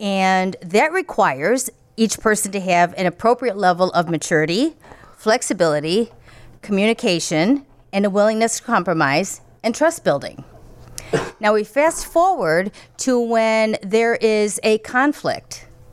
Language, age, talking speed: English, 40-59, 120 wpm